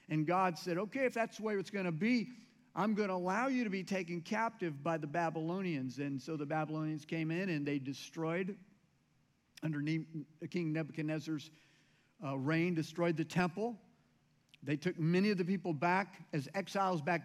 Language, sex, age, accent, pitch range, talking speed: English, male, 50-69, American, 155-200 Hz, 175 wpm